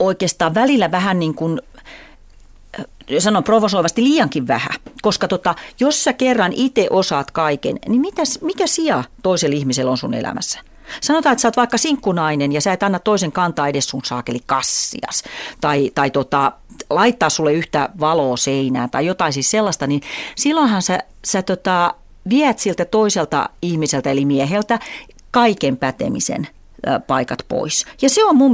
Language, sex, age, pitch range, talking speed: Finnish, female, 40-59, 150-245 Hz, 155 wpm